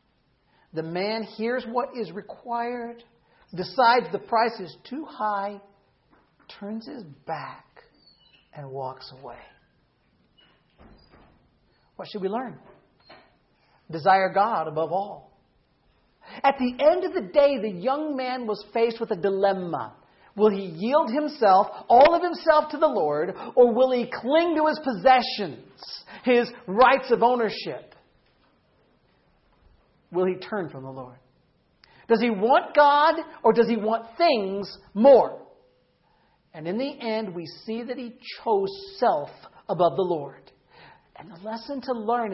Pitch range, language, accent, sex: 190-255 Hz, English, American, male